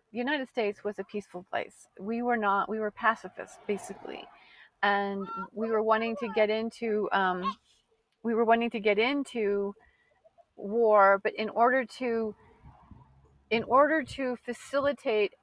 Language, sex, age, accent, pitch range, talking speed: English, female, 40-59, American, 200-250 Hz, 145 wpm